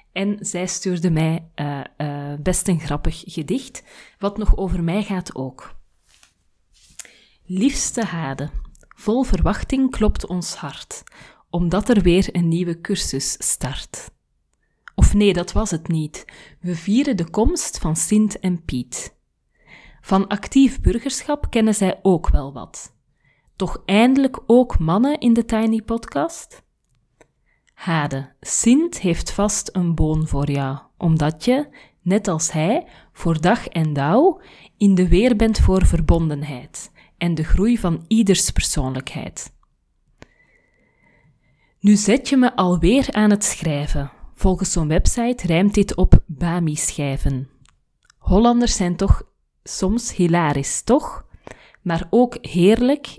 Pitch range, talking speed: 155-215 Hz, 130 wpm